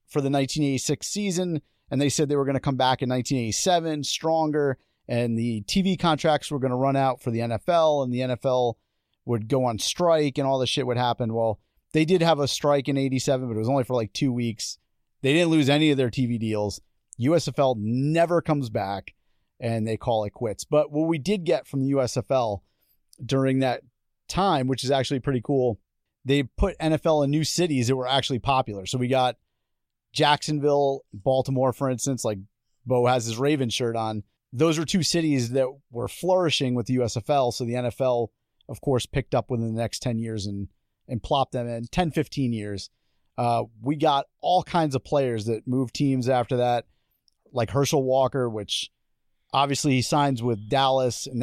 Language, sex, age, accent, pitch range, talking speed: English, male, 30-49, American, 120-145 Hz, 195 wpm